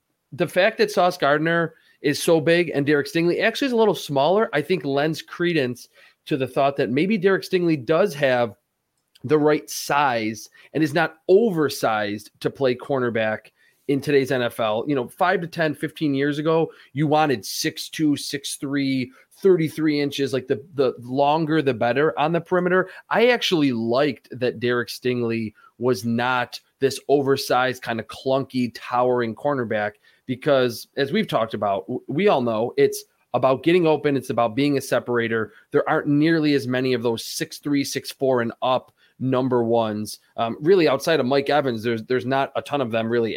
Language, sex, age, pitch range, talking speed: English, male, 30-49, 120-160 Hz, 175 wpm